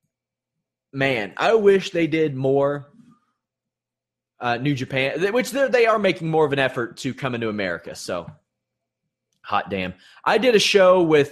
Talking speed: 155 wpm